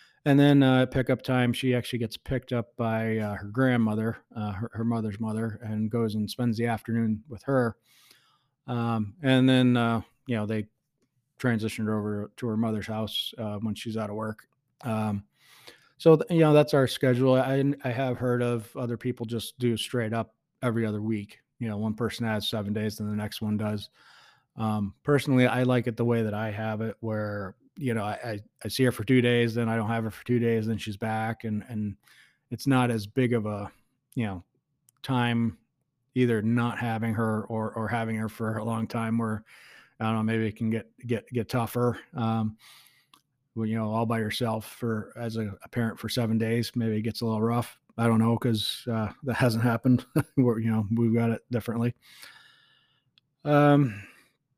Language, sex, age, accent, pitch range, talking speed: English, male, 20-39, American, 110-125 Hz, 205 wpm